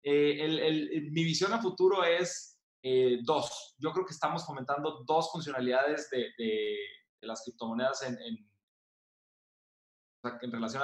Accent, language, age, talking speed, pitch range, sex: Mexican, Spanish, 20-39, 150 wpm, 125-155 Hz, male